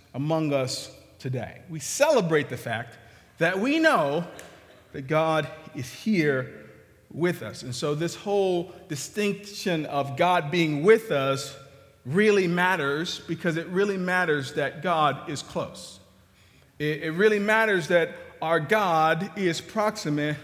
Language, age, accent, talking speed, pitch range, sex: English, 40-59, American, 130 wpm, 150-220 Hz, male